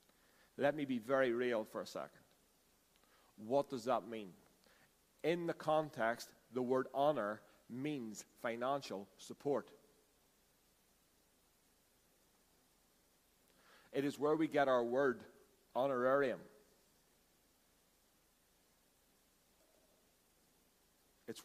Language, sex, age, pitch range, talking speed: English, male, 50-69, 140-180 Hz, 85 wpm